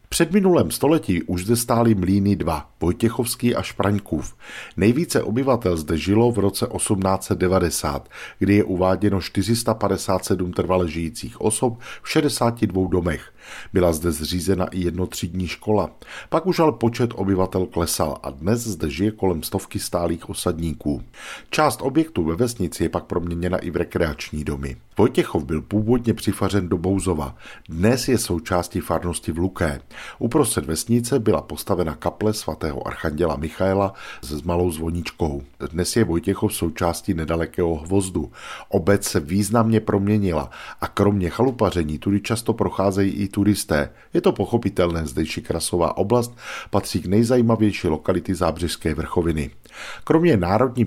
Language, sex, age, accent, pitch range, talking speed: Czech, male, 50-69, native, 85-110 Hz, 135 wpm